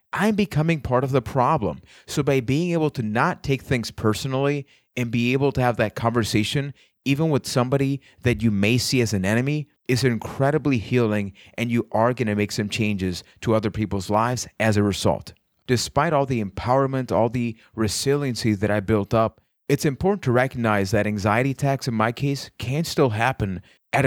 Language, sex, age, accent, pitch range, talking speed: English, male, 30-49, American, 100-125 Hz, 185 wpm